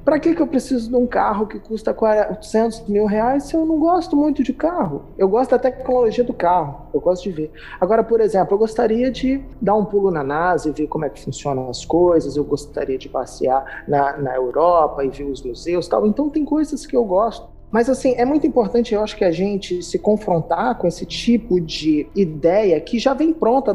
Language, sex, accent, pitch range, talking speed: Portuguese, male, Brazilian, 180-255 Hz, 225 wpm